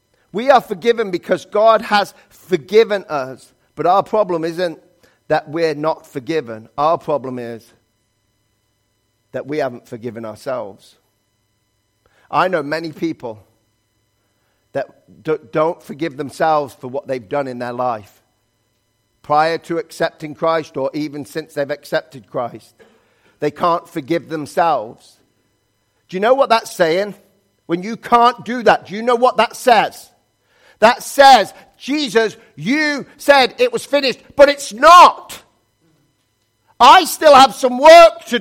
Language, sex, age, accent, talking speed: English, male, 40-59, British, 135 wpm